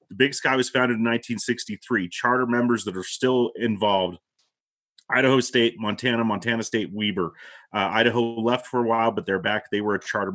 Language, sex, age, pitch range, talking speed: English, male, 30-49, 100-120 Hz, 185 wpm